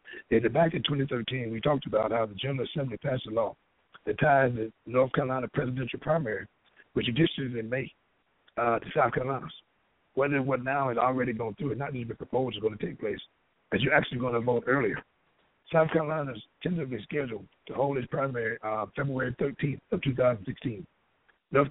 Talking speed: 185 wpm